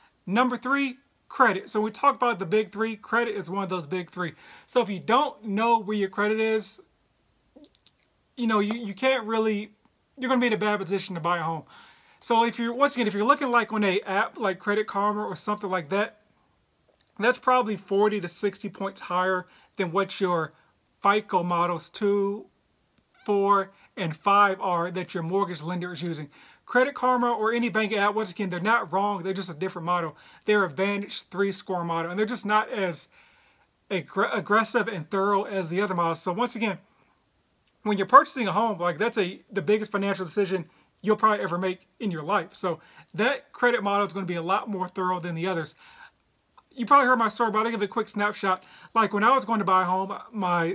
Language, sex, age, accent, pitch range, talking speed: English, male, 30-49, American, 185-225 Hz, 210 wpm